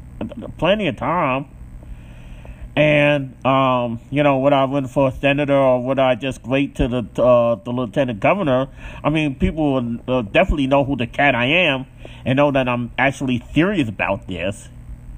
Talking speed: 170 wpm